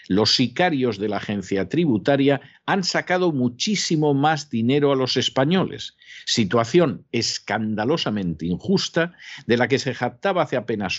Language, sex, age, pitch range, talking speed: Spanish, male, 50-69, 105-150 Hz, 130 wpm